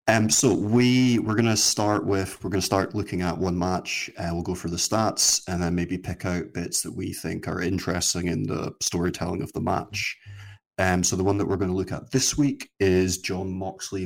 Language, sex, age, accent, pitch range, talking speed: English, male, 30-49, British, 90-100 Hz, 225 wpm